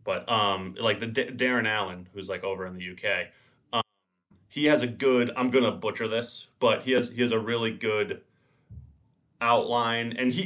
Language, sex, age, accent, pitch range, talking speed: English, male, 30-49, American, 100-125 Hz, 190 wpm